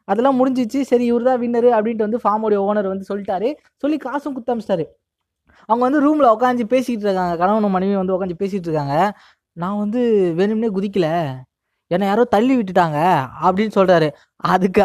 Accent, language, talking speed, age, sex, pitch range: native, Tamil, 155 wpm, 20-39, female, 170-230 Hz